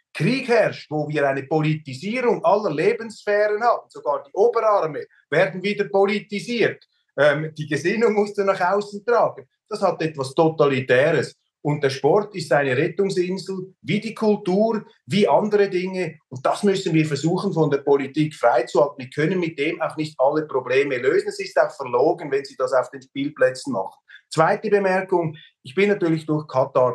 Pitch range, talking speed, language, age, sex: 150-205 Hz, 165 wpm, German, 30-49, male